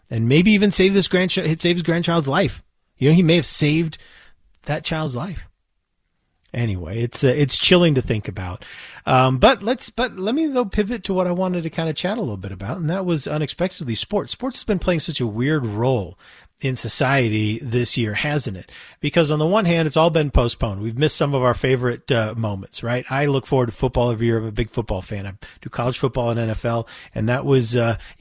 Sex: male